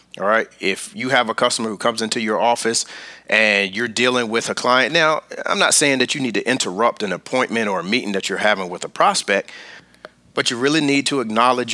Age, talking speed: 30-49, 225 wpm